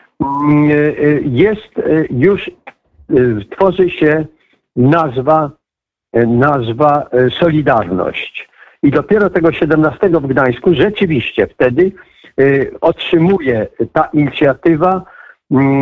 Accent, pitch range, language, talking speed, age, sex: native, 130-170 Hz, Polish, 70 wpm, 50-69, male